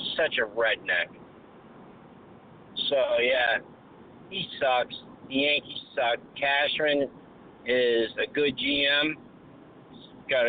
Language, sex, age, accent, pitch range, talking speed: English, male, 50-69, American, 125-170 Hz, 95 wpm